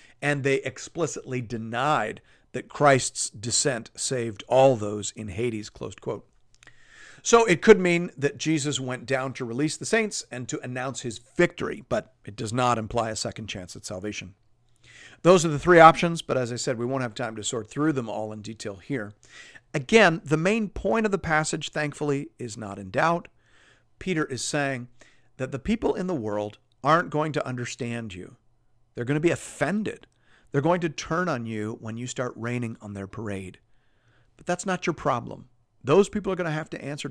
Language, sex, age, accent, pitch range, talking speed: English, male, 50-69, American, 115-150 Hz, 190 wpm